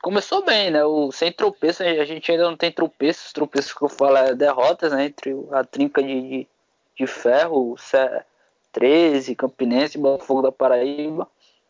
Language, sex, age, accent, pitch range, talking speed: Portuguese, male, 20-39, Brazilian, 140-170 Hz, 165 wpm